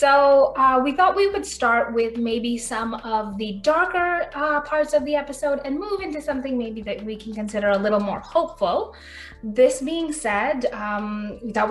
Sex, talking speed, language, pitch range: female, 185 wpm, English, 210-265 Hz